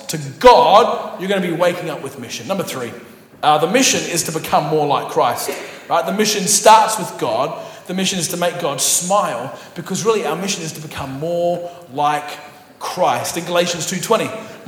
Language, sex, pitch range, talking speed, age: English, male, 175-250 Hz, 190 wpm, 30-49